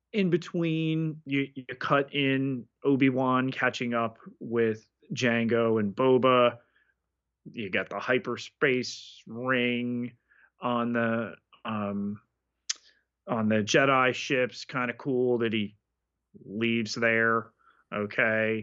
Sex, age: male, 30-49